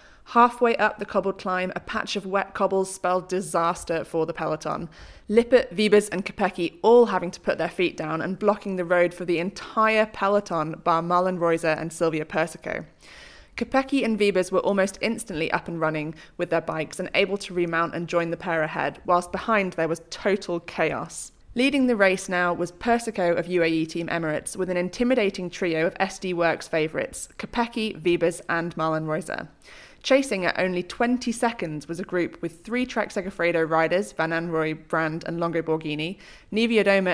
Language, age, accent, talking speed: English, 20-39, British, 180 wpm